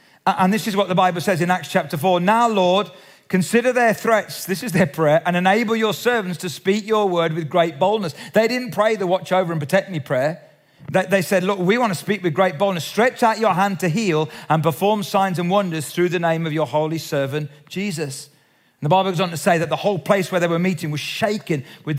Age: 40-59